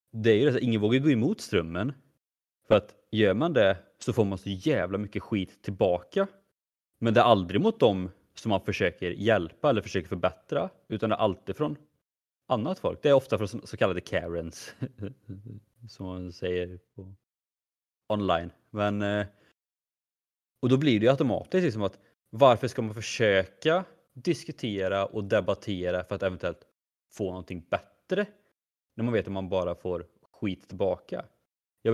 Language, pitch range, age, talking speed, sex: Swedish, 90-120 Hz, 30-49, 165 wpm, male